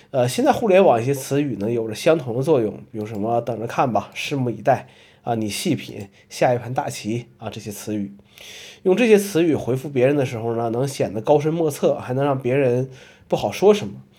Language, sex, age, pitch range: Chinese, male, 20-39, 110-145 Hz